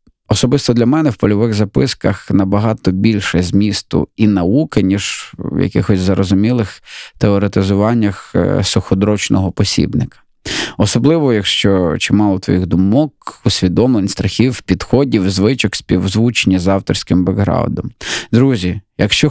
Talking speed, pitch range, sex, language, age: 105 wpm, 95-115 Hz, male, Ukrainian, 20-39